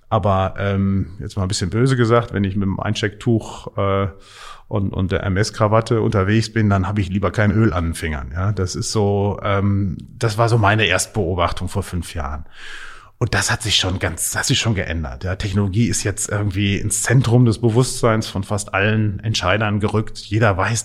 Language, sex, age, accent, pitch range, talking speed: German, male, 30-49, German, 95-115 Hz, 200 wpm